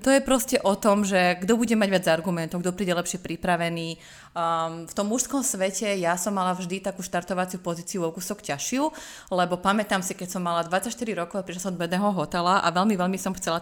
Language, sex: Slovak, female